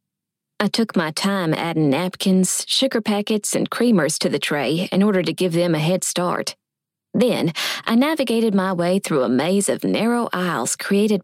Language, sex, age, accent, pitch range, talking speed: English, female, 20-39, American, 165-225 Hz, 175 wpm